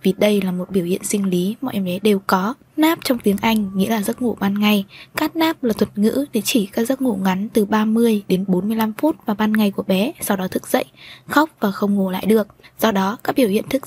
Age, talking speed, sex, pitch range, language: 20-39, 260 wpm, female, 195-240 Hz, Vietnamese